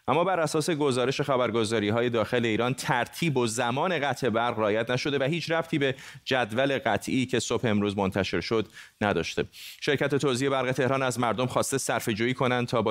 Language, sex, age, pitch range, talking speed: Persian, male, 30-49, 110-135 Hz, 180 wpm